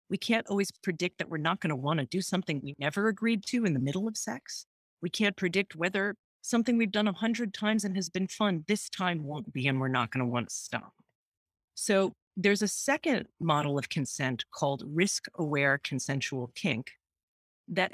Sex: female